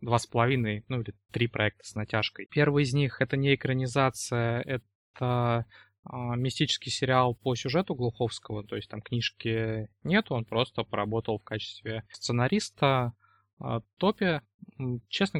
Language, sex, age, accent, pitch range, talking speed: Russian, male, 20-39, native, 115-135 Hz, 140 wpm